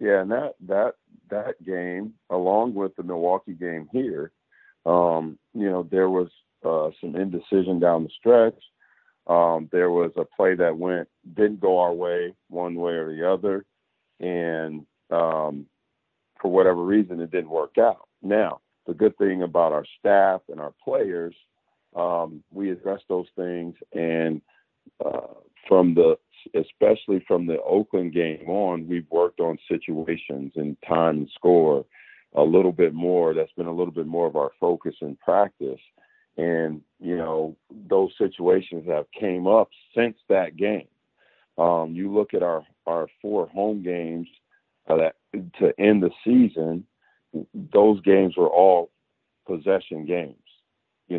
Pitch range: 80-95 Hz